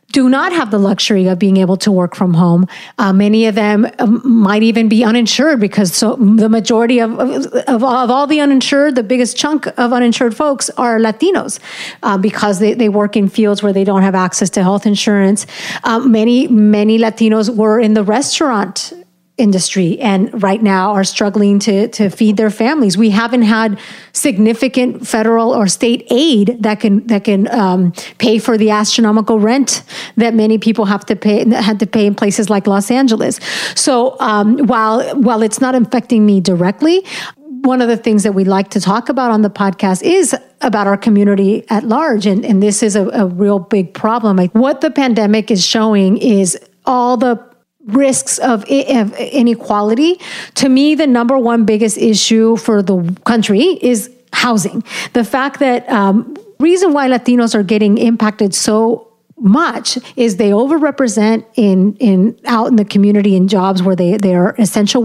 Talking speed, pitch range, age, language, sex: 180 wpm, 205-245 Hz, 30-49, English, female